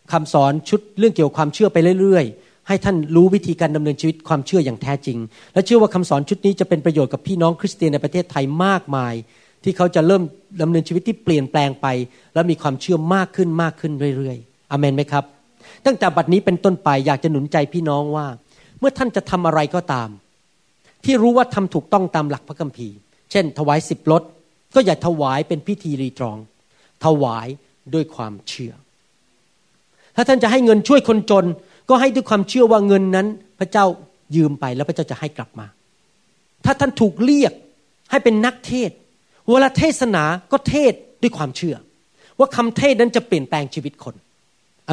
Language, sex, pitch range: Thai, male, 145-195 Hz